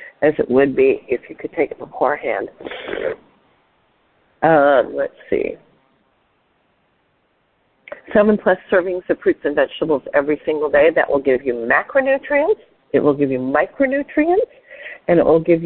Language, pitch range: English, 150-225 Hz